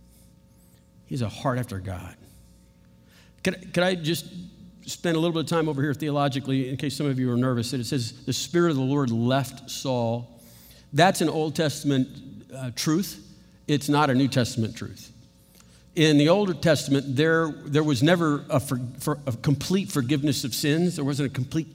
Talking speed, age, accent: 185 wpm, 50-69, American